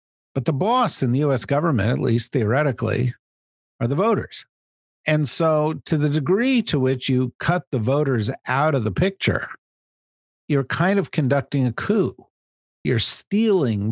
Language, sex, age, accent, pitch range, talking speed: English, male, 50-69, American, 105-145 Hz, 155 wpm